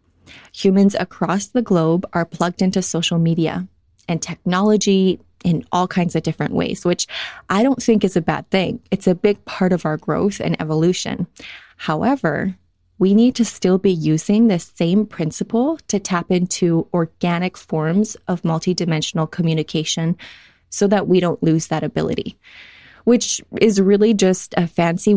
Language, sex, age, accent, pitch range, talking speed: English, female, 20-39, American, 165-195 Hz, 155 wpm